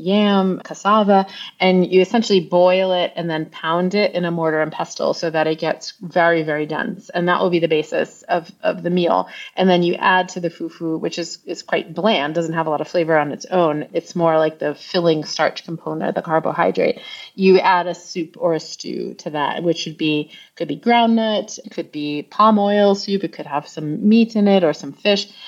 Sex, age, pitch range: female, 30-49, 165-195 Hz